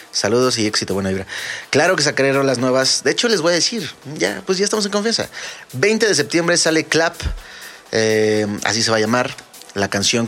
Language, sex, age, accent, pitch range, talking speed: Spanish, male, 30-49, Mexican, 100-135 Hz, 205 wpm